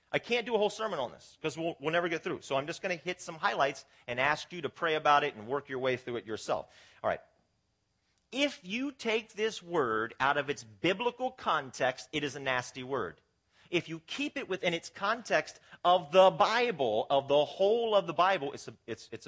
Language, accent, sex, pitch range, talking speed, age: English, American, male, 135-190 Hz, 225 wpm, 40-59